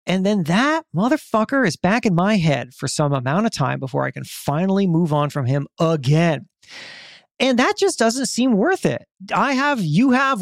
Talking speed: 195 wpm